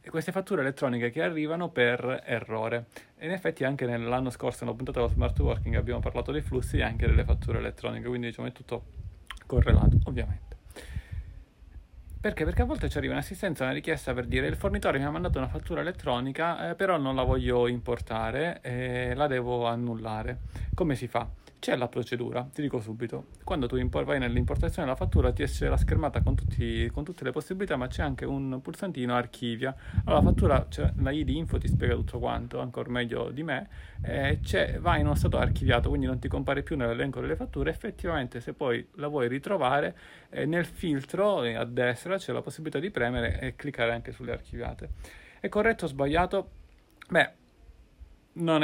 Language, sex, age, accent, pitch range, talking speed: Italian, male, 30-49, native, 115-140 Hz, 185 wpm